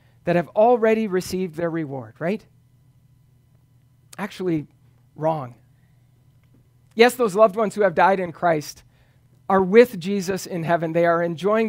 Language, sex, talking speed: English, male, 135 wpm